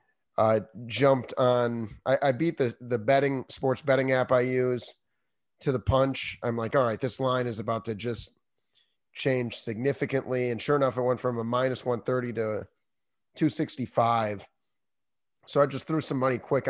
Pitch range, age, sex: 115-135 Hz, 30-49, male